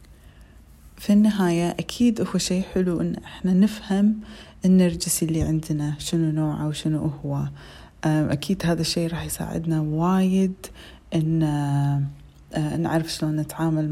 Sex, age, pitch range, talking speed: female, 30-49, 170-215 Hz, 110 wpm